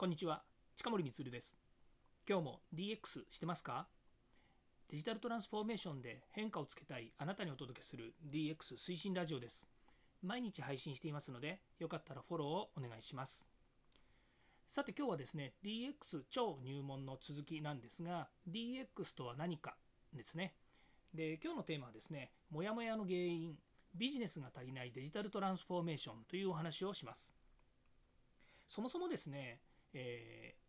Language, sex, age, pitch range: Japanese, male, 40-59, 135-200 Hz